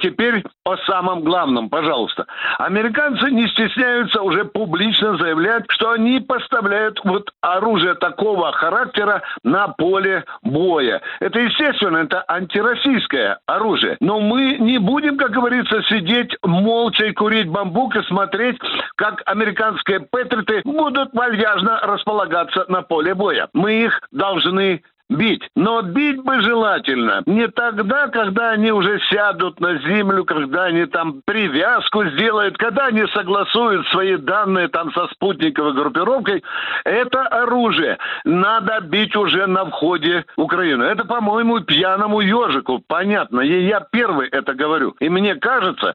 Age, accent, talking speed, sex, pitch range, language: 60-79, native, 130 wpm, male, 190-235 Hz, Russian